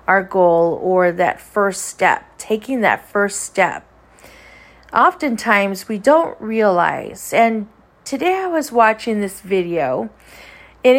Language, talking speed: English, 120 wpm